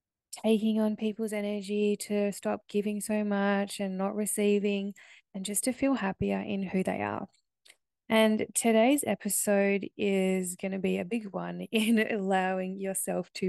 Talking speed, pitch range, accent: 155 wpm, 200-230 Hz, Australian